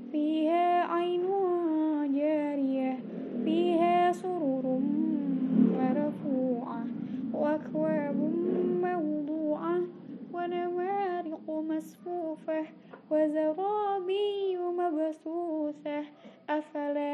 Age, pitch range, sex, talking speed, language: 10-29, 260-315 Hz, female, 45 wpm, Indonesian